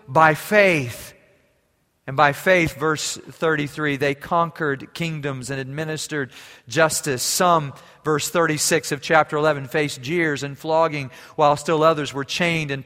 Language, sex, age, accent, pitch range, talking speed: English, male, 40-59, American, 120-160 Hz, 135 wpm